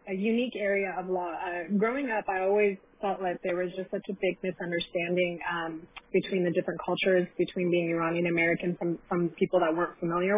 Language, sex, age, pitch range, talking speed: English, female, 30-49, 180-205 Hz, 190 wpm